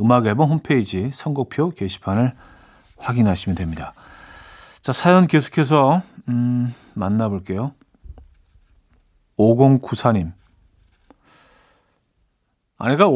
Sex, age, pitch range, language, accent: male, 40-59, 110-155 Hz, Korean, native